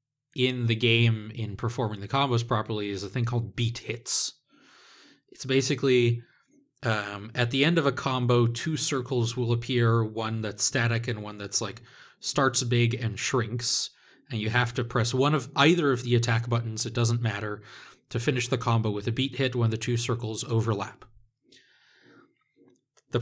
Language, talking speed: English, 175 wpm